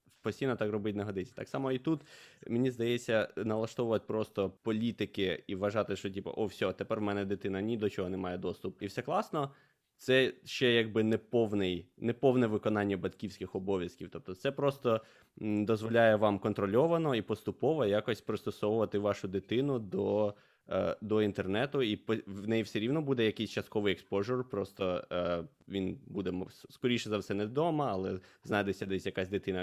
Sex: male